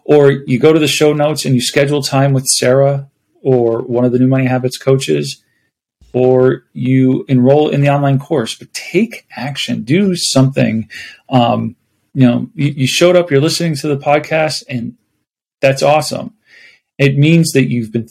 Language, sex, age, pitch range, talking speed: English, male, 30-49, 125-145 Hz, 175 wpm